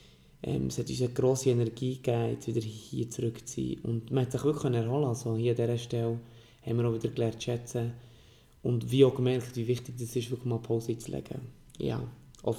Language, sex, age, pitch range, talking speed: German, male, 20-39, 115-140 Hz, 215 wpm